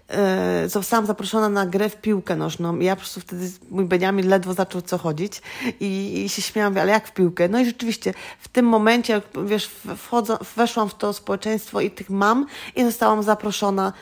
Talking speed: 190 wpm